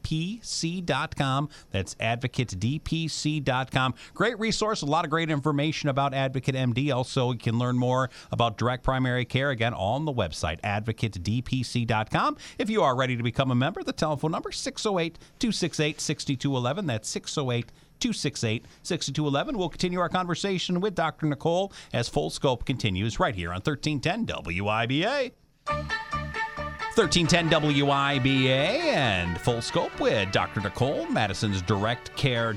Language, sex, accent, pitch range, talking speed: English, male, American, 120-170 Hz, 135 wpm